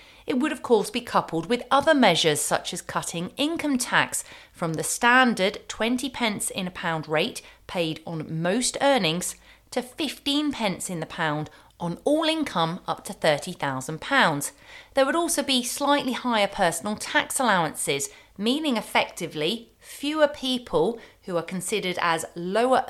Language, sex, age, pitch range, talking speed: English, female, 40-59, 165-250 Hz, 150 wpm